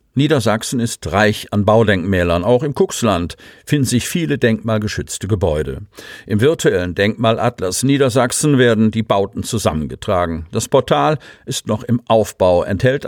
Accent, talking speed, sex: German, 130 wpm, male